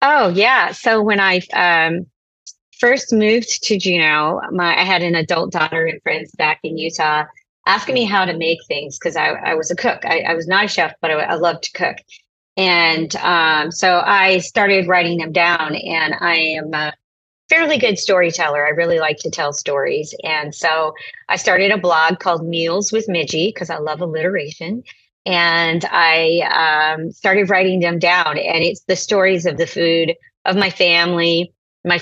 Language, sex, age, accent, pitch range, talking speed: English, female, 30-49, American, 160-190 Hz, 185 wpm